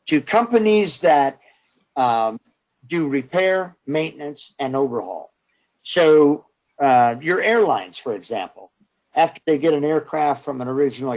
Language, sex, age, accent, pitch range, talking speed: English, male, 50-69, American, 130-160 Hz, 125 wpm